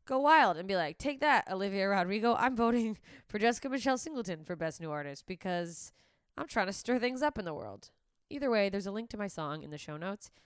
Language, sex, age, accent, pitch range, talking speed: English, female, 20-39, American, 165-225 Hz, 235 wpm